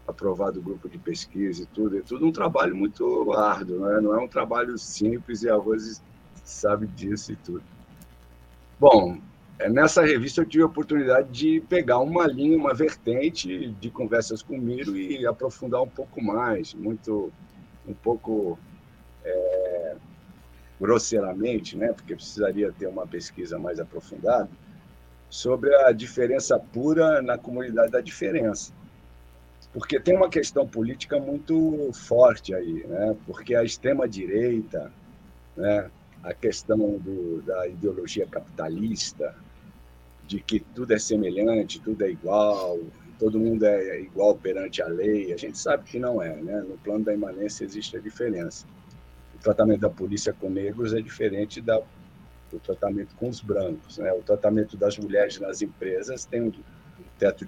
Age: 50-69